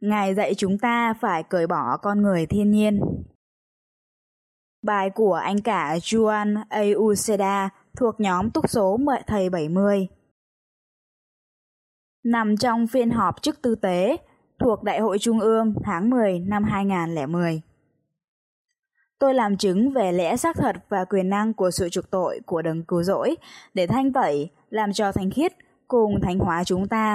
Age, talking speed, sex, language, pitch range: 10-29, 150 wpm, female, Vietnamese, 185-230 Hz